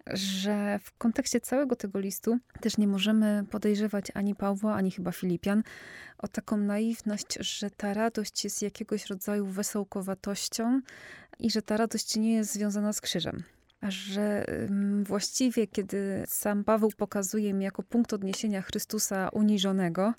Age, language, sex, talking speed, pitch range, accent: 20-39, Polish, female, 140 wpm, 195-220 Hz, native